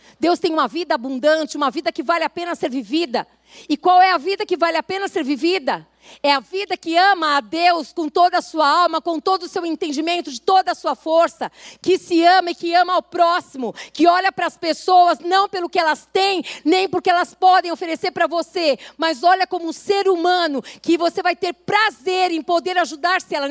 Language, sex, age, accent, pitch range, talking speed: Portuguese, female, 50-69, Brazilian, 310-370 Hz, 220 wpm